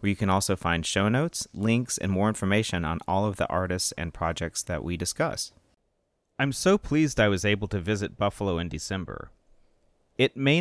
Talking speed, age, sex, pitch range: 185 wpm, 30-49, male, 95-125 Hz